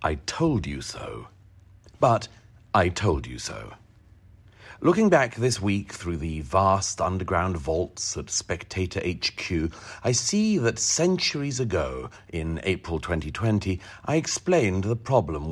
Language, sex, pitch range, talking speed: English, male, 85-115 Hz, 130 wpm